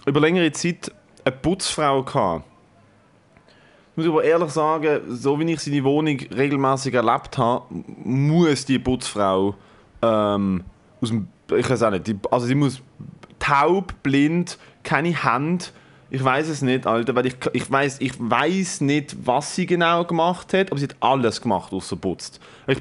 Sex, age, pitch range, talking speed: male, 30-49, 135-175 Hz, 150 wpm